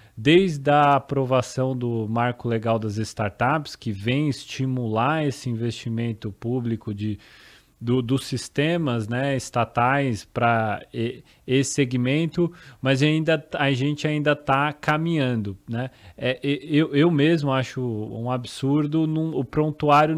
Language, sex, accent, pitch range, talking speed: Portuguese, male, Brazilian, 120-155 Hz, 120 wpm